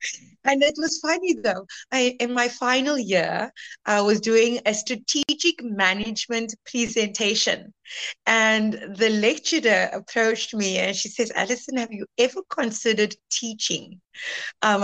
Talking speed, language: 125 wpm, English